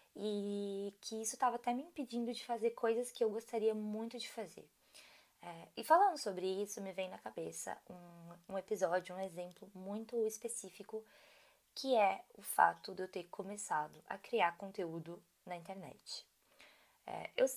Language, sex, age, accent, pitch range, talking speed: Portuguese, female, 20-39, Brazilian, 180-230 Hz, 160 wpm